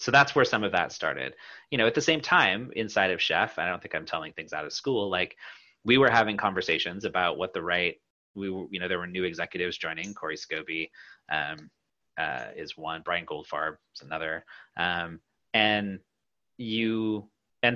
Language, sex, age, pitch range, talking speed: English, male, 30-49, 95-115 Hz, 195 wpm